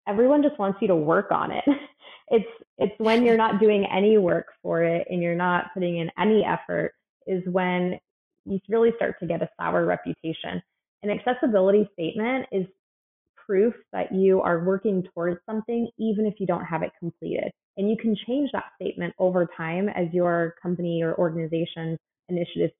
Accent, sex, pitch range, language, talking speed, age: American, female, 165-195 Hz, English, 175 wpm, 20-39